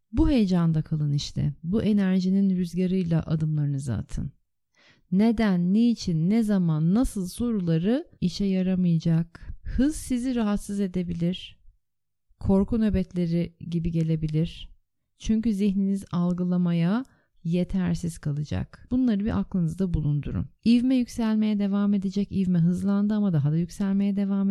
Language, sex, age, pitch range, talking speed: Turkish, female, 30-49, 165-220 Hz, 110 wpm